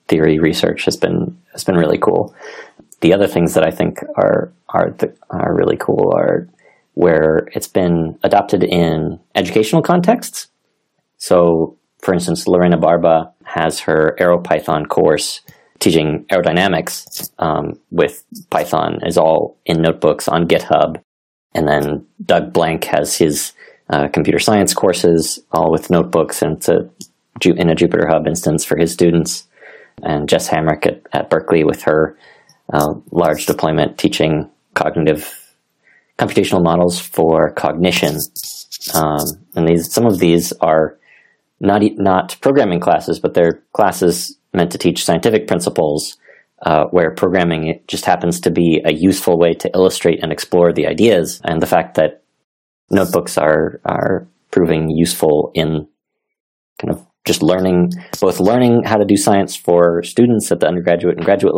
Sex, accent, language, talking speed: male, American, English, 145 wpm